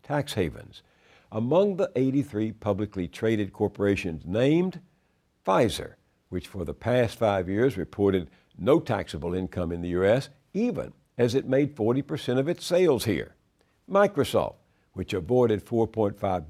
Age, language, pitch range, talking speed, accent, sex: 60-79, English, 100-140 Hz, 135 wpm, American, male